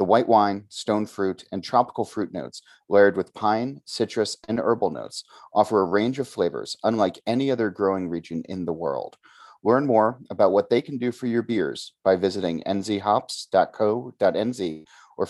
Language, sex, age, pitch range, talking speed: English, male, 30-49, 95-125 Hz, 170 wpm